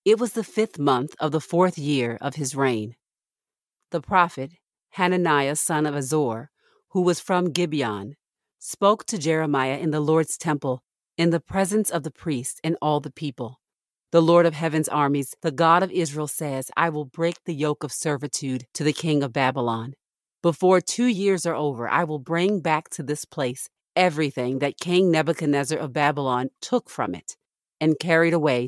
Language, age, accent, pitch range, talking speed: English, 40-59, American, 140-170 Hz, 180 wpm